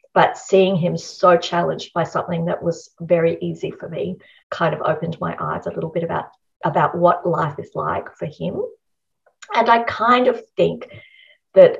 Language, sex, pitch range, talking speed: English, female, 170-205 Hz, 180 wpm